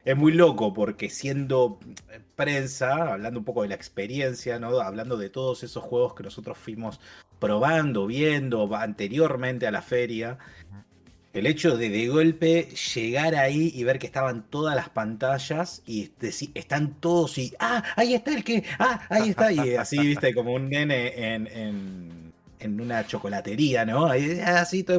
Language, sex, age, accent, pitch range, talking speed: Spanish, male, 30-49, Argentinian, 115-165 Hz, 165 wpm